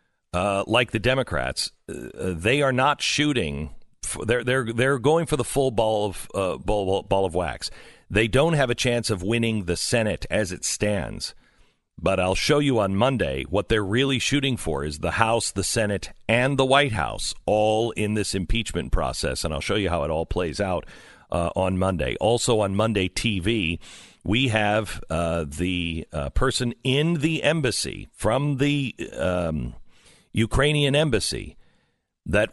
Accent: American